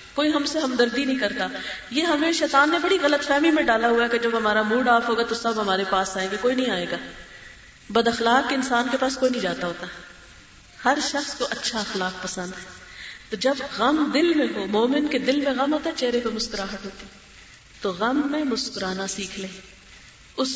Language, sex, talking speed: Urdu, female, 210 wpm